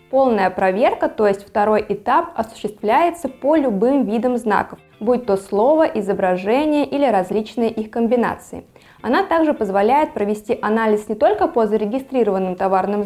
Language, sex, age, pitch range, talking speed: Russian, female, 20-39, 195-255 Hz, 135 wpm